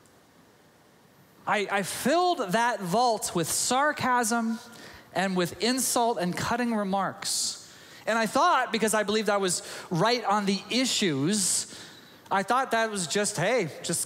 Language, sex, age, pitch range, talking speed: English, male, 30-49, 155-210 Hz, 135 wpm